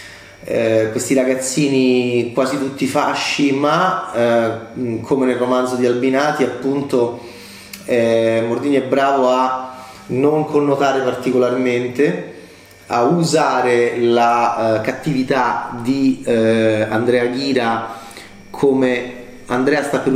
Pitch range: 120-140 Hz